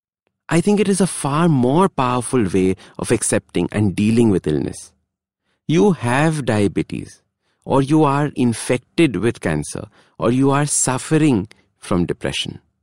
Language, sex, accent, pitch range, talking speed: English, male, Indian, 105-155 Hz, 140 wpm